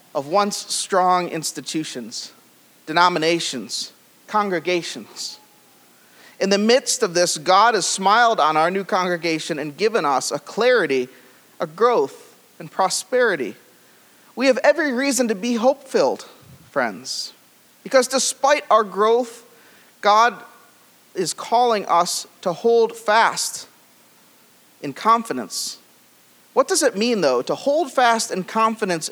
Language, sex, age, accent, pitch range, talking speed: English, male, 40-59, American, 175-245 Hz, 120 wpm